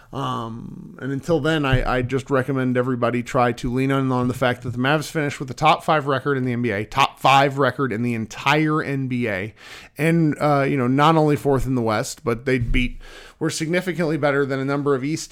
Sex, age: male, 40-59